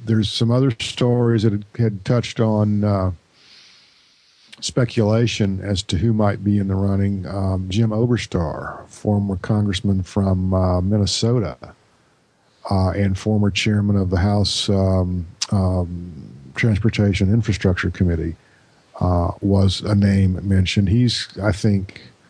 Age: 50-69